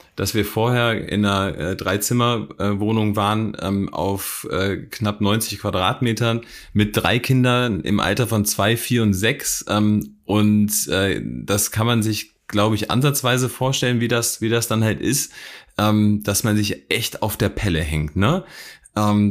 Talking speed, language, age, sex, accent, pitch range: 170 wpm, German, 30-49, male, German, 100-115 Hz